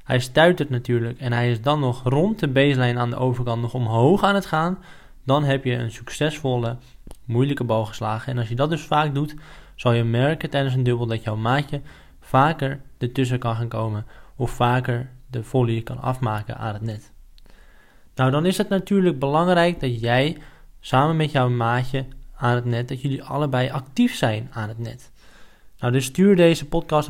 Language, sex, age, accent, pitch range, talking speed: Dutch, male, 10-29, Dutch, 125-150 Hz, 190 wpm